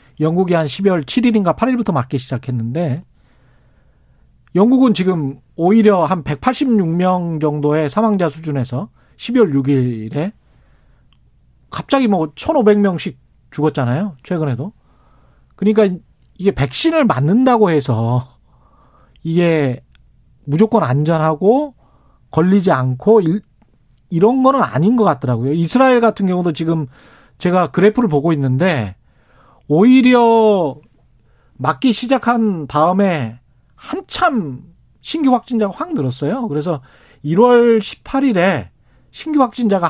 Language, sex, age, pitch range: Korean, male, 40-59, 140-215 Hz